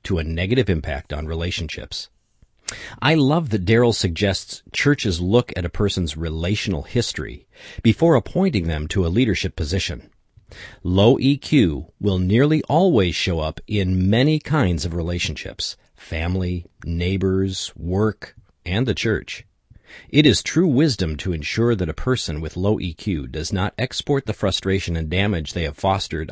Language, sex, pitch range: English, male, 85-115 Hz